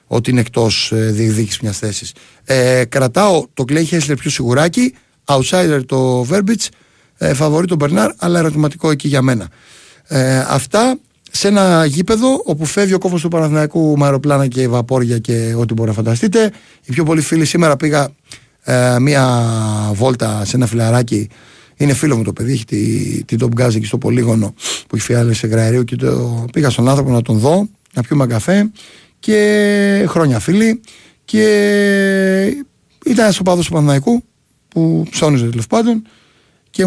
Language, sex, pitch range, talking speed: Greek, male, 120-170 Hz, 160 wpm